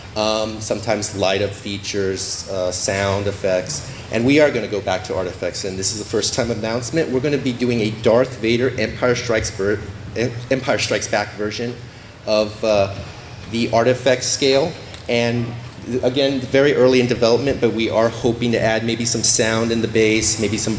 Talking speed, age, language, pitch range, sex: 180 wpm, 30-49, English, 105-125 Hz, male